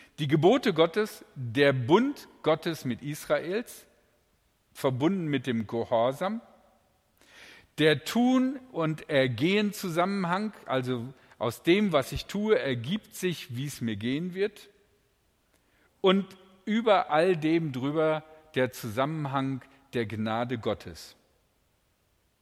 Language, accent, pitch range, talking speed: German, German, 130-190 Hz, 105 wpm